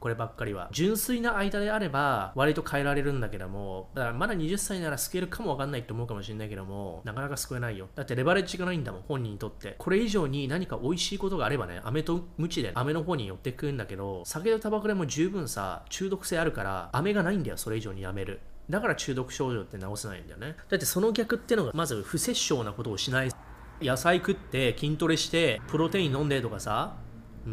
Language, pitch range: Japanese, 110-175 Hz